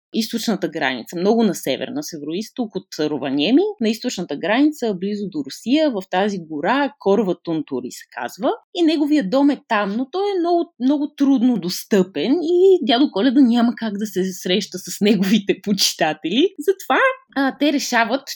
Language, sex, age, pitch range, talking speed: Bulgarian, female, 20-39, 185-280 Hz, 155 wpm